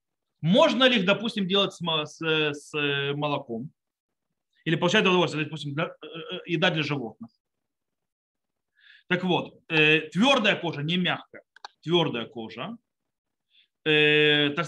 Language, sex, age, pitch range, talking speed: Russian, male, 30-49, 140-175 Hz, 110 wpm